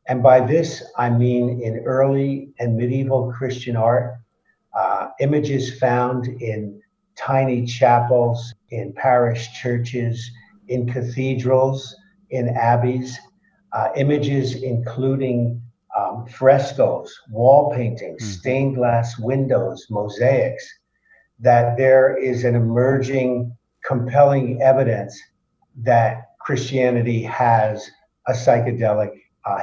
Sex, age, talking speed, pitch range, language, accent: male, 50-69, 95 wpm, 120-135 Hz, English, American